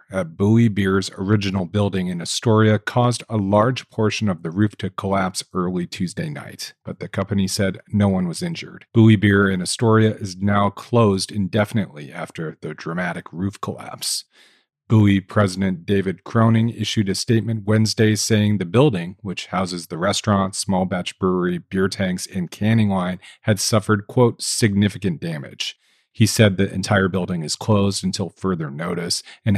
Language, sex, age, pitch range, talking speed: English, male, 40-59, 95-110 Hz, 160 wpm